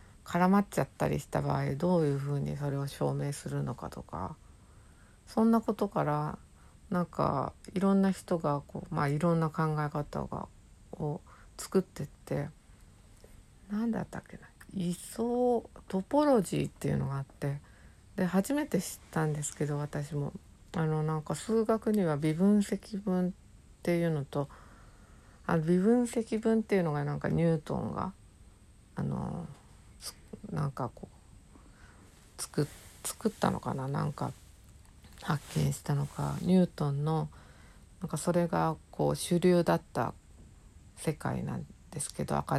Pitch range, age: 135-190 Hz, 60-79